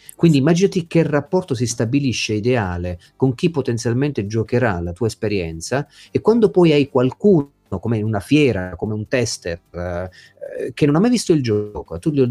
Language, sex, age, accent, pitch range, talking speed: Italian, male, 40-59, native, 100-140 Hz, 175 wpm